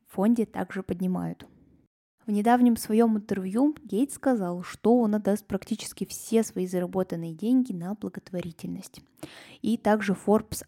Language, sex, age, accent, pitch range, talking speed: Russian, female, 20-39, native, 180-225 Hz, 120 wpm